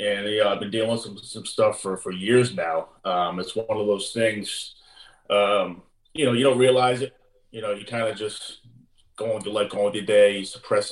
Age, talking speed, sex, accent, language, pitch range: 30-49, 245 wpm, male, American, English, 95-125 Hz